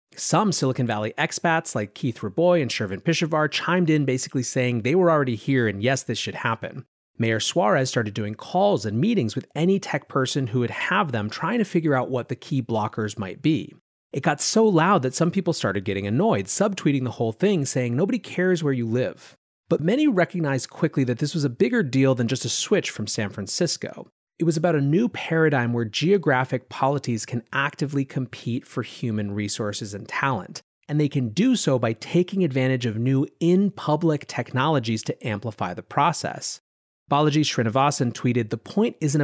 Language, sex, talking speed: English, male, 190 wpm